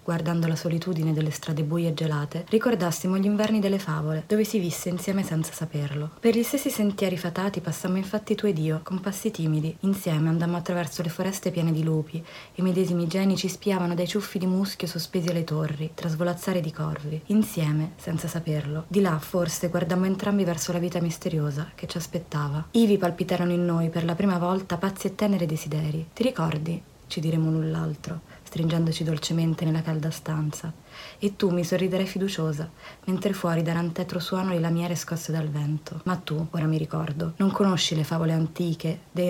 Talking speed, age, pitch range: 185 wpm, 20-39, 160-185 Hz